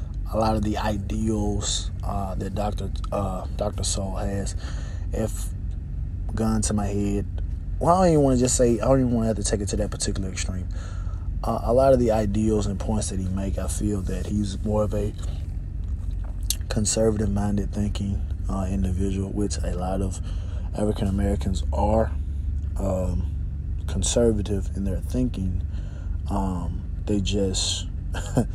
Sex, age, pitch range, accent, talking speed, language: male, 20-39, 85-105 Hz, American, 155 wpm, English